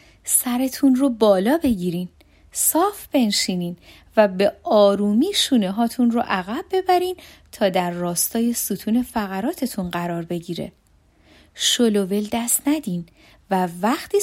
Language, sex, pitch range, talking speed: Persian, female, 195-280 Hz, 105 wpm